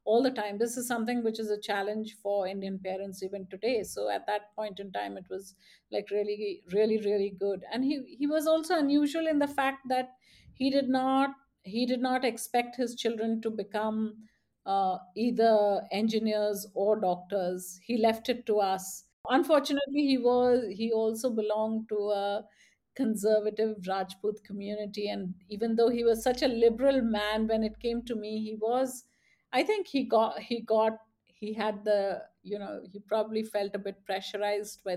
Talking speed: 180 wpm